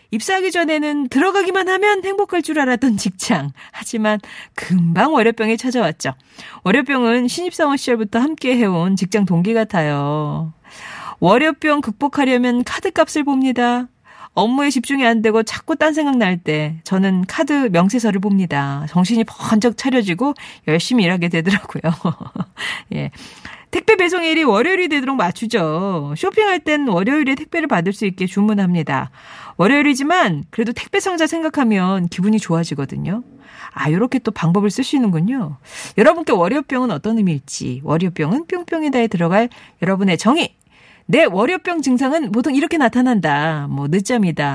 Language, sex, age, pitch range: Korean, female, 40-59, 180-290 Hz